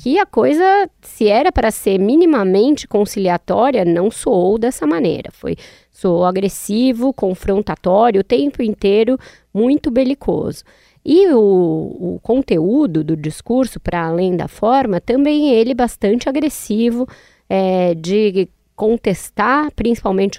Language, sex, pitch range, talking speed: Portuguese, female, 185-235 Hz, 120 wpm